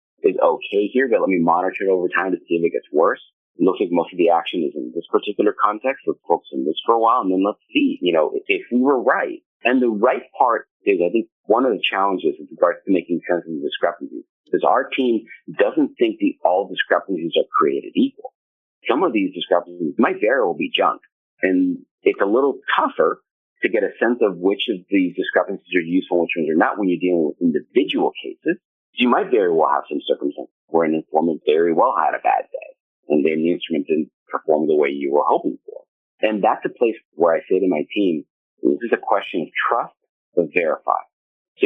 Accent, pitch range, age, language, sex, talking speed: American, 270-415 Hz, 40-59, English, male, 230 wpm